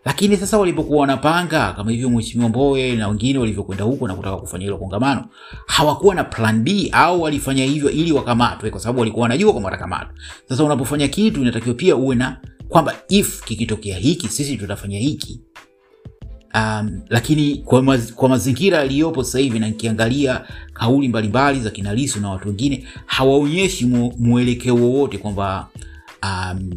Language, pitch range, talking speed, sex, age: Swahili, 100-130 Hz, 150 wpm, male, 30-49